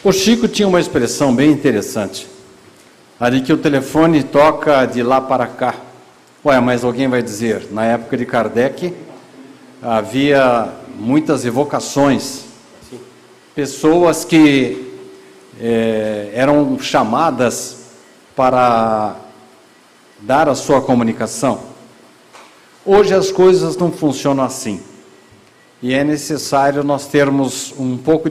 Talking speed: 110 wpm